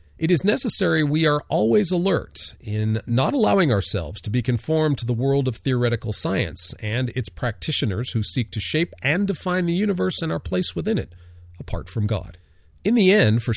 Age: 40-59